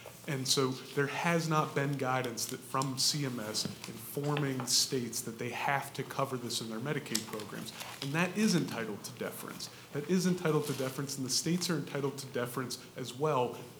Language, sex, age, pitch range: English, male, 30-49, 130-155 Hz